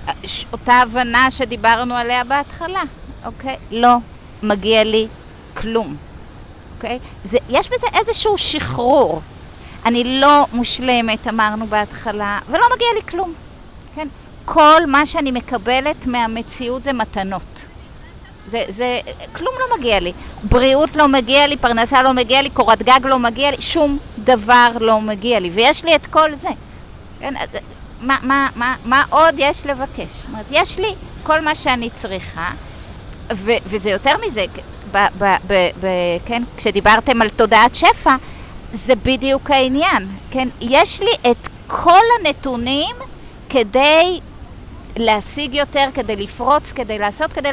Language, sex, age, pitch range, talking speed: Hebrew, female, 30-49, 225-295 Hz, 130 wpm